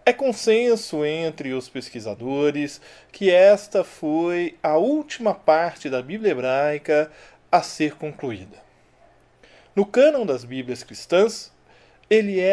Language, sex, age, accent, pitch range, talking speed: Portuguese, male, 40-59, Brazilian, 150-240 Hz, 115 wpm